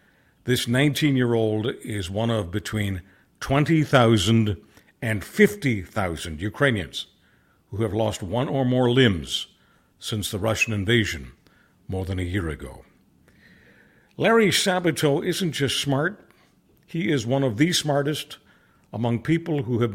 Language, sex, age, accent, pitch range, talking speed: English, male, 60-79, American, 110-140 Hz, 125 wpm